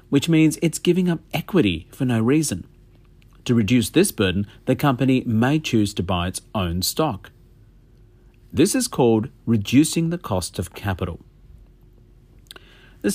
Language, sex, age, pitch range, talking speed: English, male, 50-69, 110-155 Hz, 140 wpm